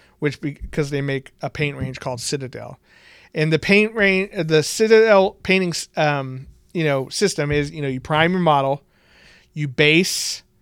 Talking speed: 165 wpm